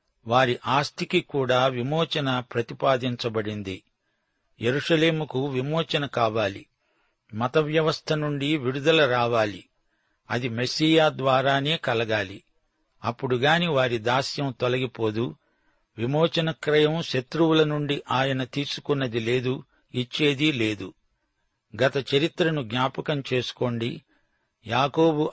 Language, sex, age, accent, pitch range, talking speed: Telugu, male, 60-79, native, 125-155 Hz, 80 wpm